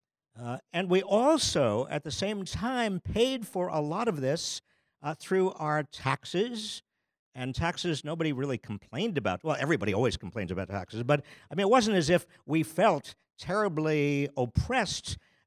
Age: 50-69